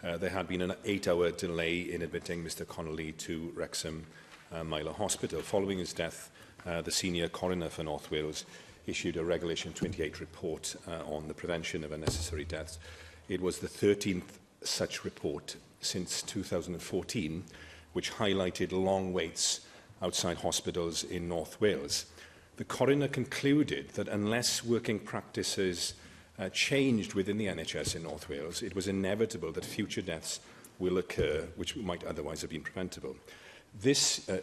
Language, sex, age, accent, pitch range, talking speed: English, male, 40-59, British, 85-105 Hz, 150 wpm